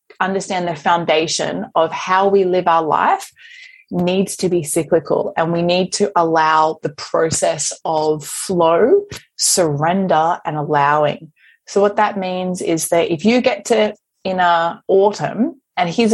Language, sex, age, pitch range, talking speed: English, female, 20-39, 165-210 Hz, 150 wpm